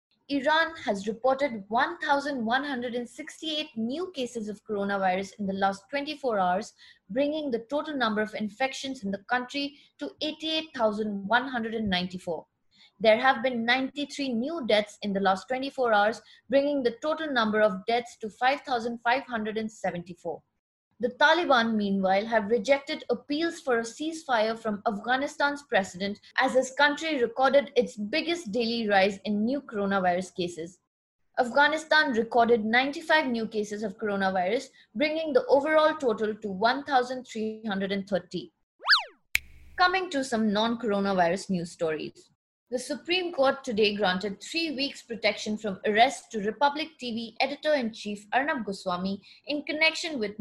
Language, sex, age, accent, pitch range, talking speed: English, female, 20-39, Indian, 210-280 Hz, 125 wpm